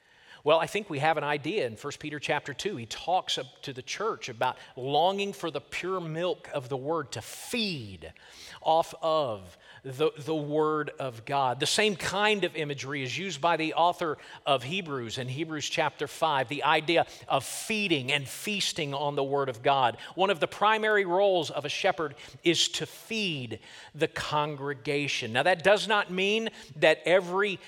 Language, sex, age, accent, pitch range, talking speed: English, male, 40-59, American, 140-185 Hz, 180 wpm